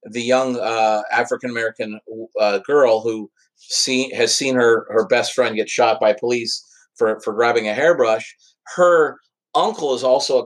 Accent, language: American, English